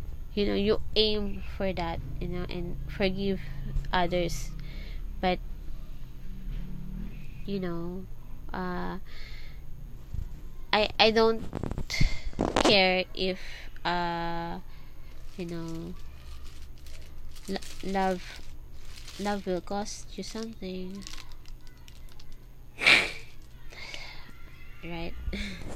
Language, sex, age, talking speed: English, female, 20-39, 70 wpm